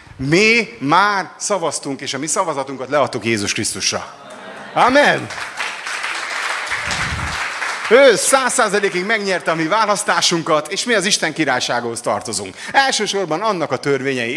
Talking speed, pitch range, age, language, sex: 115 wpm, 135-195 Hz, 30-49, Hungarian, male